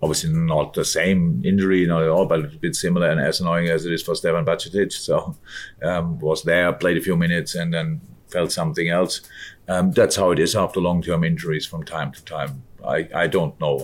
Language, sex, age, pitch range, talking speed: English, male, 50-69, 80-90 Hz, 215 wpm